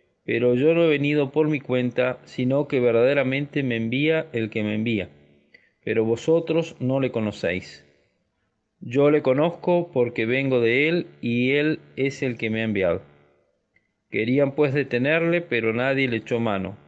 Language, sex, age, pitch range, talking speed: Spanish, male, 40-59, 110-150 Hz, 160 wpm